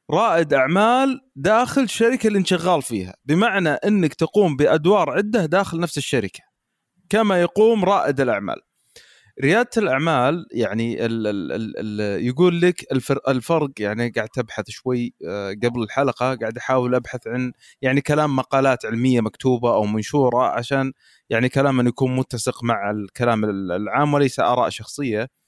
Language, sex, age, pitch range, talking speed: Arabic, male, 30-49, 120-165 Hz, 135 wpm